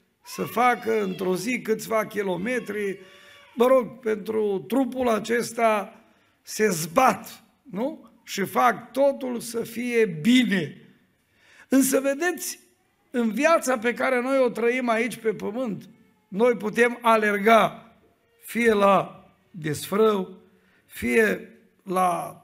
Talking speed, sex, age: 105 wpm, male, 50-69